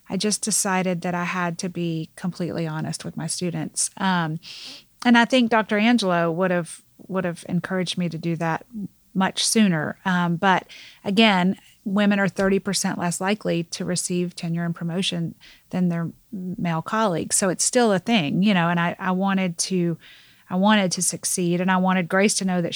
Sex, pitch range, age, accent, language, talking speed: female, 175-200 Hz, 30-49, American, English, 185 wpm